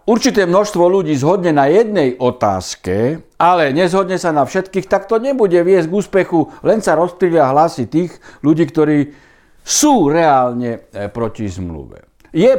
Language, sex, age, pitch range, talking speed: Slovak, male, 60-79, 140-180 Hz, 145 wpm